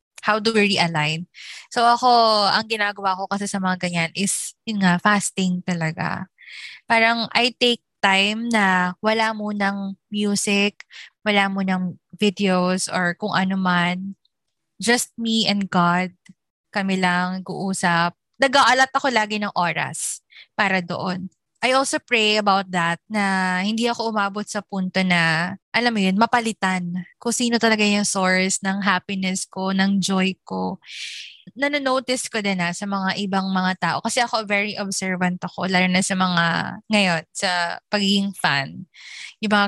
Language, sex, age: Filipino, female, 20-39